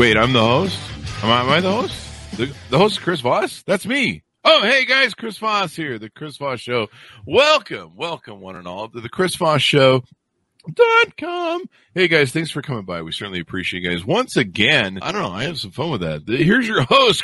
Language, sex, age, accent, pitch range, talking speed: English, male, 50-69, American, 90-145 Hz, 220 wpm